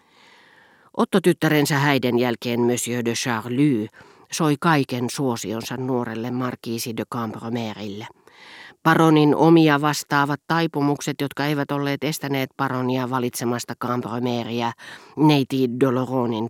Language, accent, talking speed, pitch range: Finnish, native, 95 wpm, 120-155 Hz